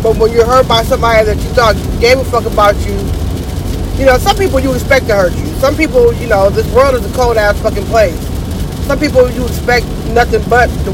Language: English